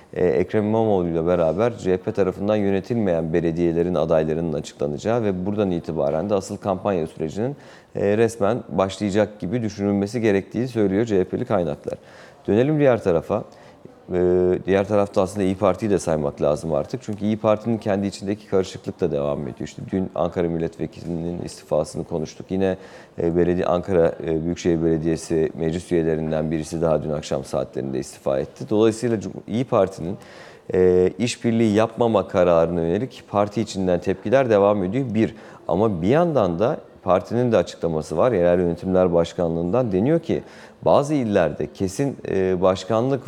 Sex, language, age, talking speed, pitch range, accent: male, Turkish, 40-59, 135 wpm, 85-110 Hz, native